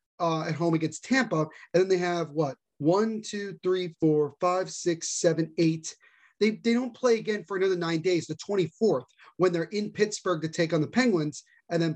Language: English